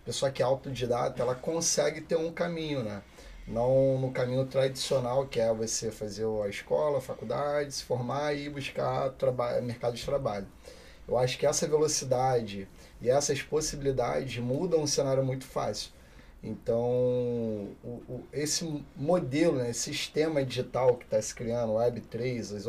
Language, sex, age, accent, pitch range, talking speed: Portuguese, male, 30-49, Brazilian, 120-150 Hz, 155 wpm